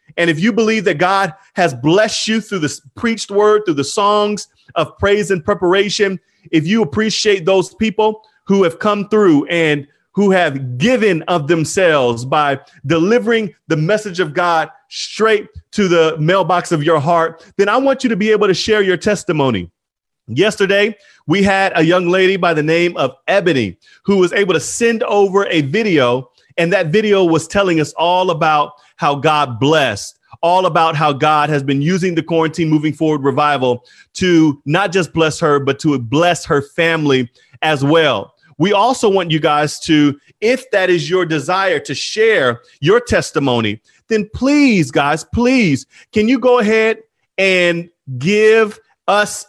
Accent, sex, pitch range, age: American, male, 155-210 Hz, 30-49